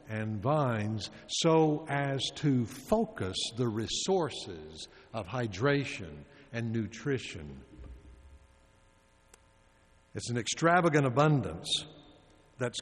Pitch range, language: 110-145 Hz, English